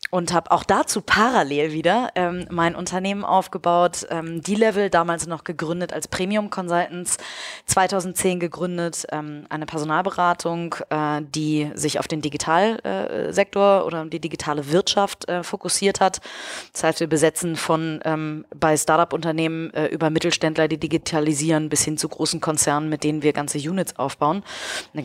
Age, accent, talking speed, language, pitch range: 20-39, German, 150 wpm, German, 155-175 Hz